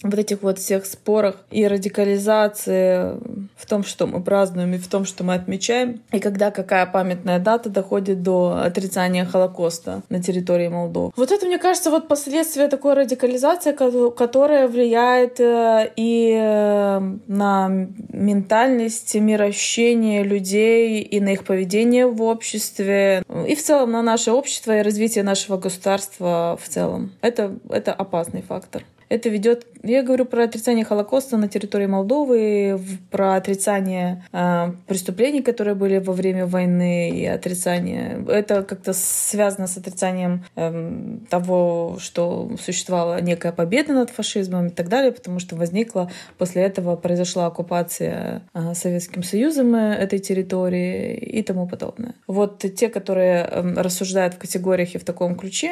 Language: Russian